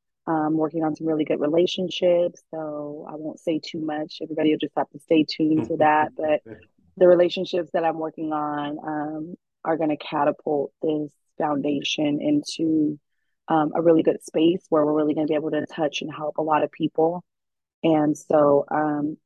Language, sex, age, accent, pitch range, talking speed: English, female, 20-39, American, 150-165 Hz, 185 wpm